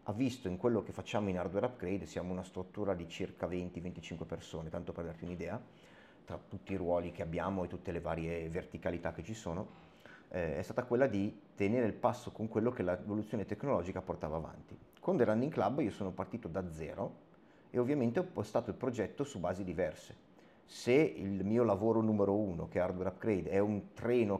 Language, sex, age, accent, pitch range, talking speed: Italian, male, 30-49, native, 90-110 Hz, 195 wpm